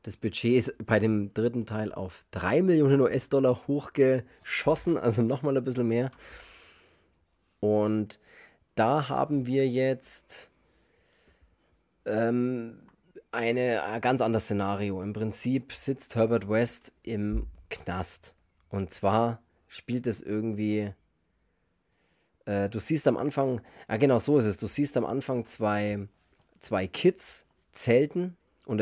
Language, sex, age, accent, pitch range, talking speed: German, male, 30-49, German, 105-125 Hz, 120 wpm